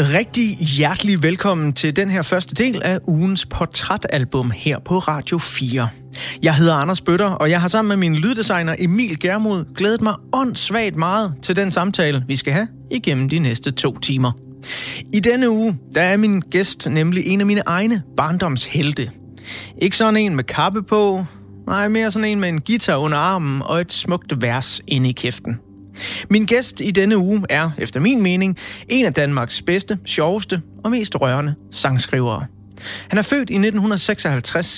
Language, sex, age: Danish, male, 30-49